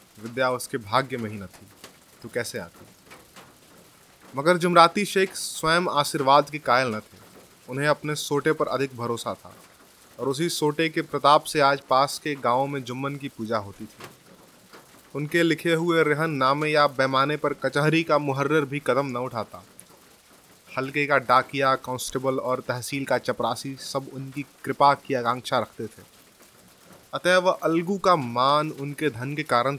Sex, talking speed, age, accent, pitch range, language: male, 165 wpm, 30-49, native, 130-155 Hz, Hindi